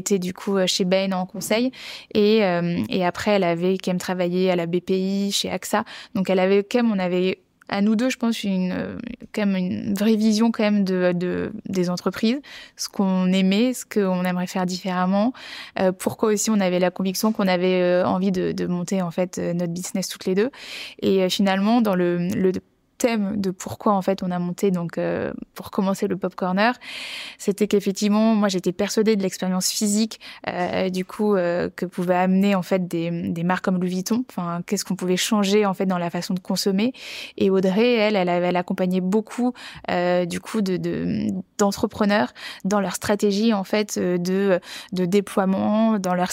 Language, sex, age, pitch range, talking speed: French, female, 20-39, 185-210 Hz, 200 wpm